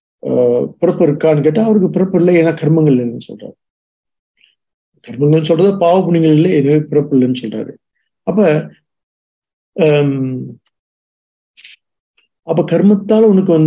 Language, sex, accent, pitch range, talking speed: English, male, Indian, 140-180 Hz, 110 wpm